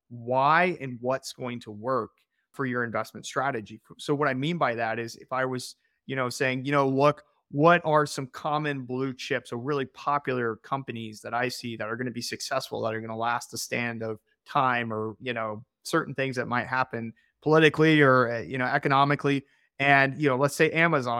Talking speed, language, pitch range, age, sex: 205 wpm, English, 125-155 Hz, 30-49, male